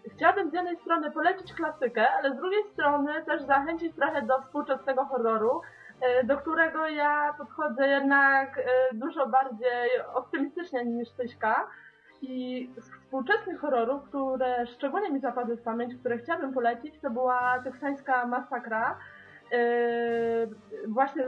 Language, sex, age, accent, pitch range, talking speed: Polish, female, 20-39, native, 250-315 Hz, 125 wpm